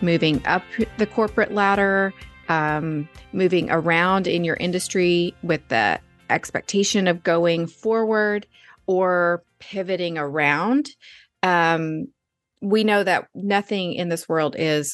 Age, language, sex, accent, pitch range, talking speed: 30-49, English, female, American, 160-200 Hz, 115 wpm